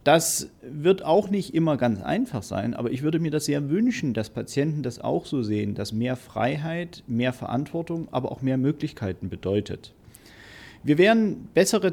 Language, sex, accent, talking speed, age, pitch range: German, male, German, 170 wpm, 40-59, 125-165 Hz